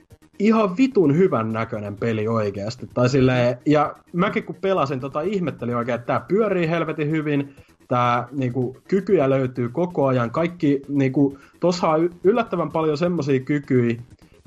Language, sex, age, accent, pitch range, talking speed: Finnish, male, 30-49, native, 110-140 Hz, 140 wpm